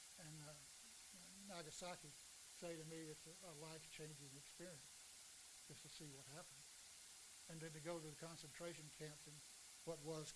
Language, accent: English, American